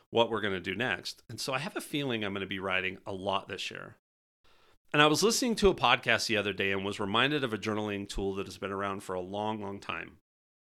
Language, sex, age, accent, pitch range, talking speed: English, male, 30-49, American, 95-120 Hz, 260 wpm